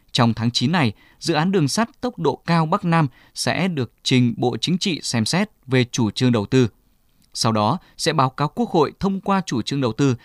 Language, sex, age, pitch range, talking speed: Vietnamese, male, 20-39, 120-160 Hz, 230 wpm